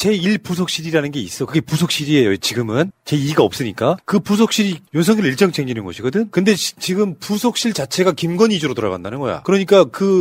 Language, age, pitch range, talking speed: English, 30-49, 140-190 Hz, 145 wpm